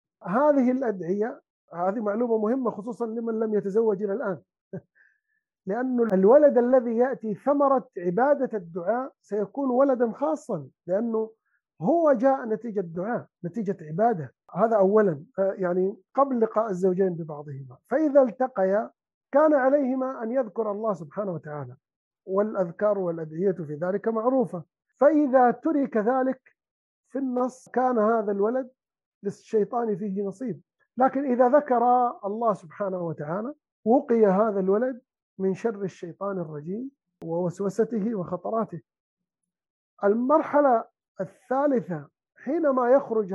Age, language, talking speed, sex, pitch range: 50-69, Arabic, 110 wpm, male, 190-255 Hz